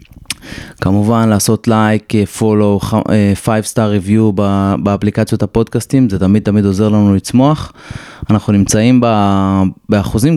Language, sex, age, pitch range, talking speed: Hebrew, male, 20-39, 100-120 Hz, 120 wpm